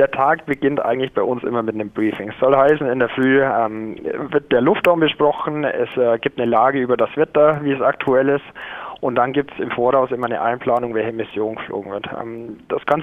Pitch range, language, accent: 120-145 Hz, German, German